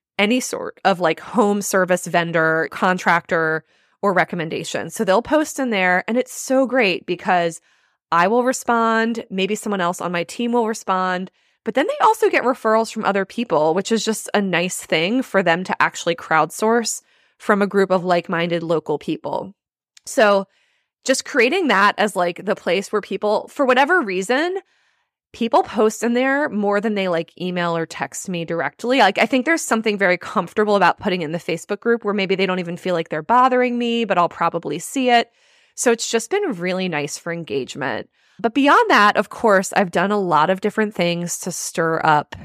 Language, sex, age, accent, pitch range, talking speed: English, female, 20-39, American, 175-235 Hz, 190 wpm